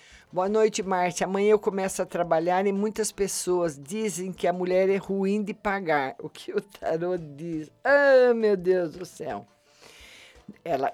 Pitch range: 175-225 Hz